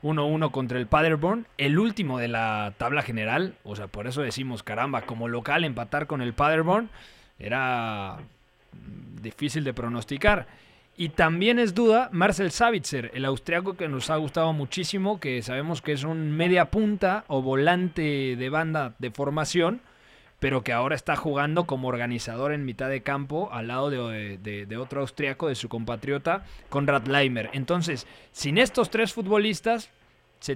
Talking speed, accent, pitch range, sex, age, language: 160 wpm, Mexican, 120-155 Hz, male, 20-39, Spanish